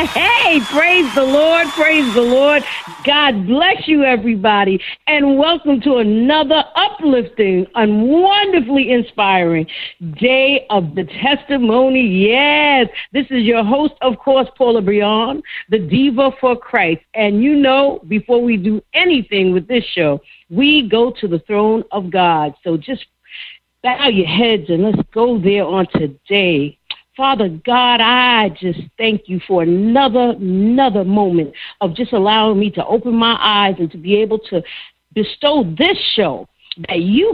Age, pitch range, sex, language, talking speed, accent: 50-69, 190-265 Hz, female, English, 150 wpm, American